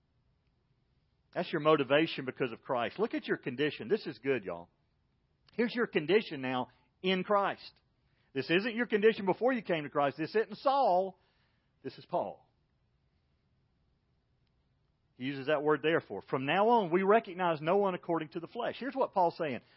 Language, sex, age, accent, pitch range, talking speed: English, male, 40-59, American, 150-220 Hz, 165 wpm